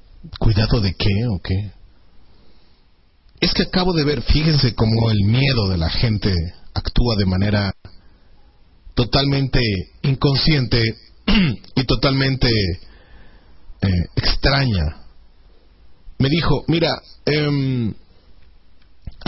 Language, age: Spanish, 40-59